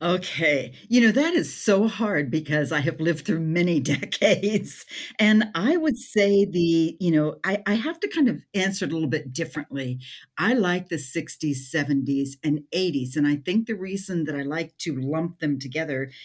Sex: female